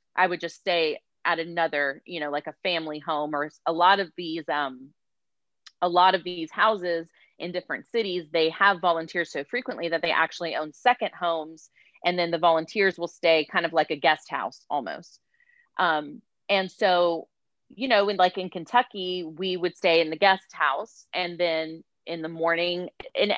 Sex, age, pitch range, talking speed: female, 30-49, 165-195 Hz, 185 wpm